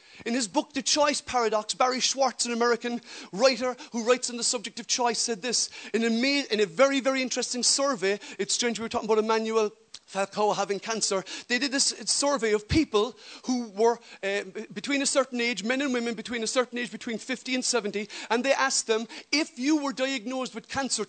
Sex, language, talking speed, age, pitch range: male, English, 200 wpm, 40-59, 220-275 Hz